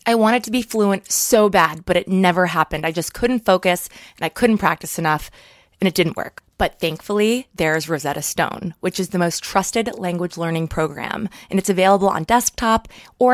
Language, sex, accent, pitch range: English, female, American, 170-220 Hz